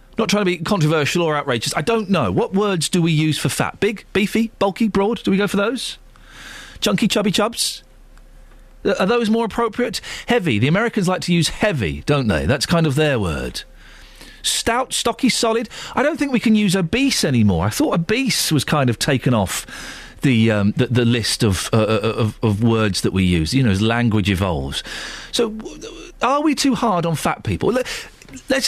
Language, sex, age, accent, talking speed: English, male, 40-59, British, 195 wpm